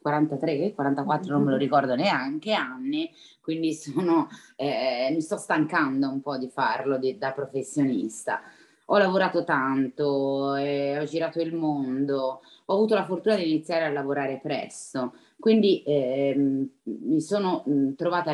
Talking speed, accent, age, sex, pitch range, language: 135 wpm, native, 20-39, female, 140-175 Hz, Italian